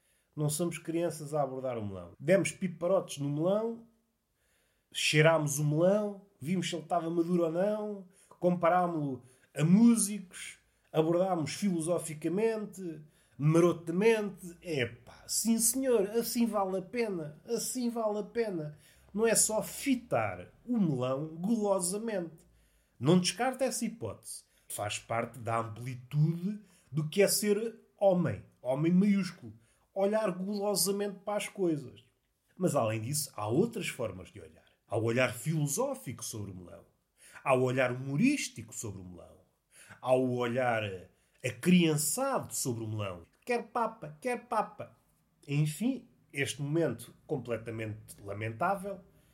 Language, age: Portuguese, 30-49